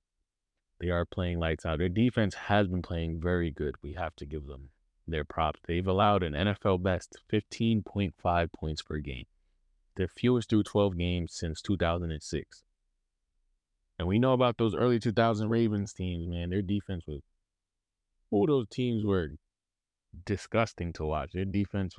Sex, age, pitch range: male, 20-39, 80-100 Hz